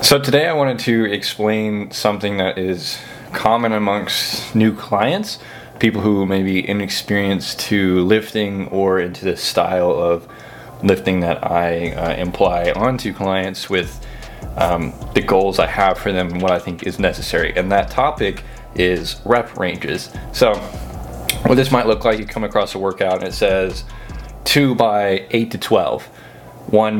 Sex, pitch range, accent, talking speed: male, 95-115 Hz, American, 160 wpm